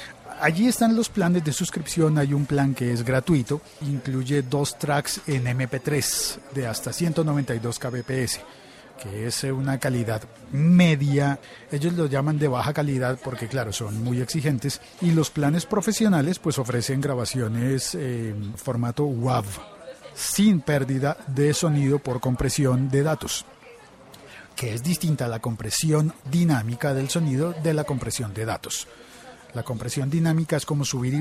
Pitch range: 125-160 Hz